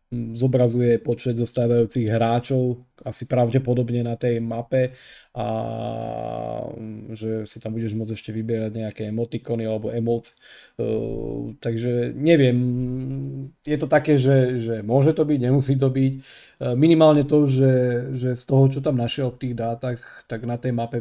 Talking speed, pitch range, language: 145 wpm, 110-125 Hz, Slovak